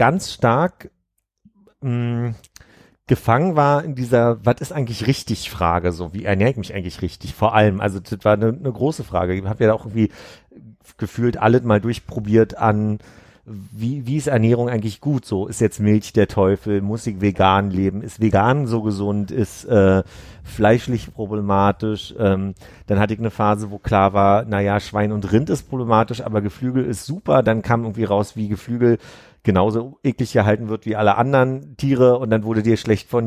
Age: 40-59